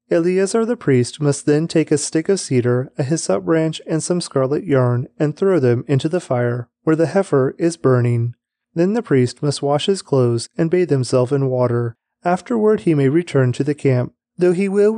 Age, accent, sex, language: 30-49, American, male, English